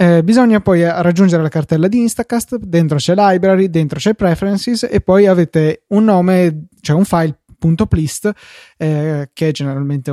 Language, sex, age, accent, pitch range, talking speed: Italian, male, 20-39, native, 150-190 Hz, 160 wpm